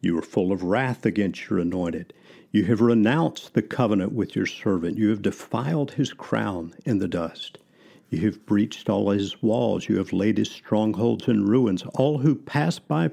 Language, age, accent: English, 50-69, American